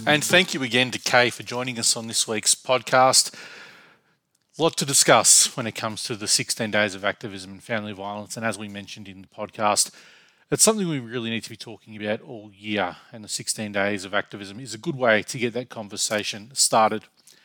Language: English